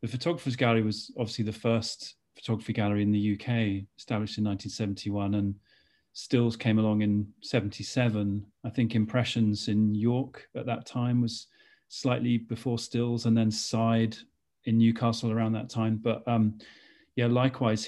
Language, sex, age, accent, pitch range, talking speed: English, male, 30-49, British, 110-125 Hz, 150 wpm